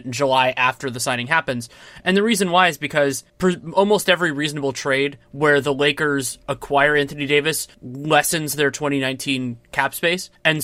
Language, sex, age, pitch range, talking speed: English, male, 20-39, 130-170 Hz, 160 wpm